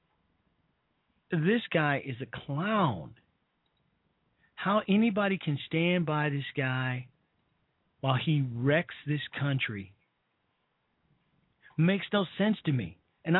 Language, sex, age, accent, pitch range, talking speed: English, male, 40-59, American, 120-160 Hz, 105 wpm